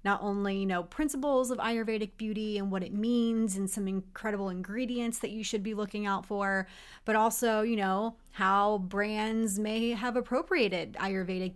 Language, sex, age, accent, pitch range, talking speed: English, female, 30-49, American, 195-235 Hz, 170 wpm